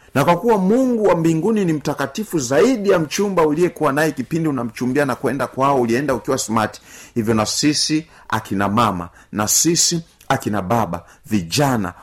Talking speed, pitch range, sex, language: 145 wpm, 110-165 Hz, male, Swahili